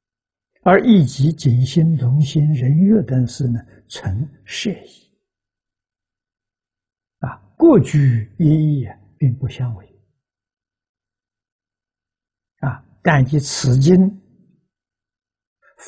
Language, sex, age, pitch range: Chinese, male, 60-79, 100-130 Hz